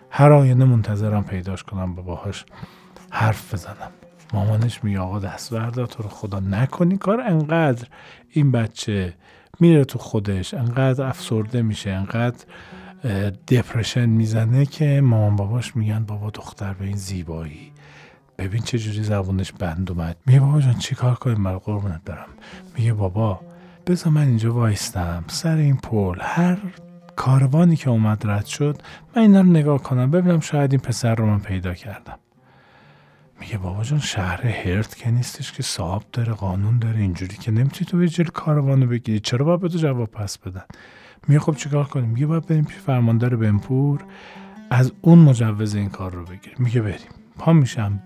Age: 40-59